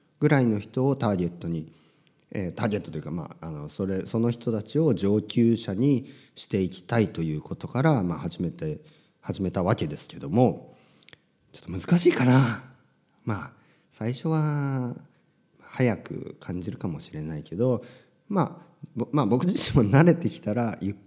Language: Japanese